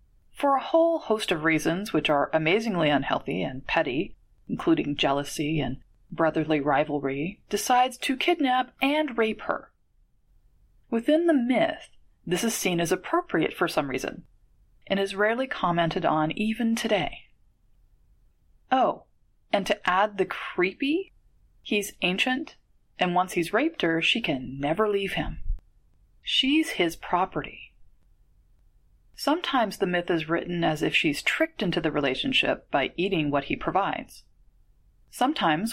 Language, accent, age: English, American, 30-49